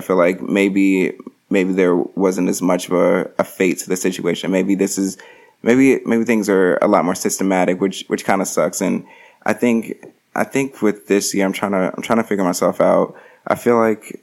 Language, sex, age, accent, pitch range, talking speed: English, male, 20-39, American, 95-100 Hz, 220 wpm